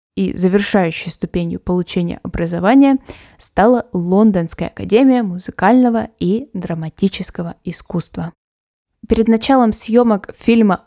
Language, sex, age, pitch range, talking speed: Russian, female, 20-39, 180-230 Hz, 90 wpm